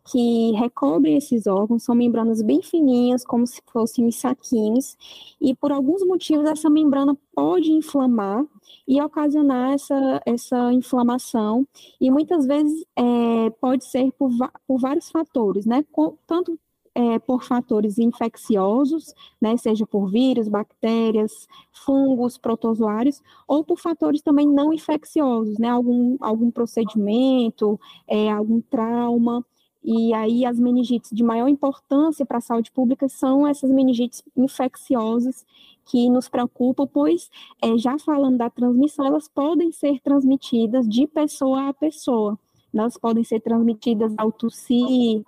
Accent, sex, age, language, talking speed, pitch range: Brazilian, female, 10-29, Portuguese, 125 wpm, 230-285 Hz